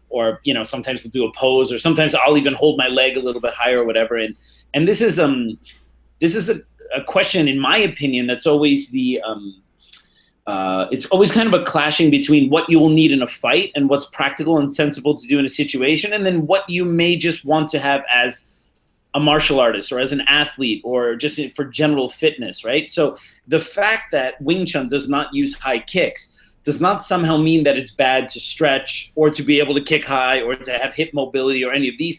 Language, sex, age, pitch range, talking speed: English, male, 30-49, 130-165 Hz, 230 wpm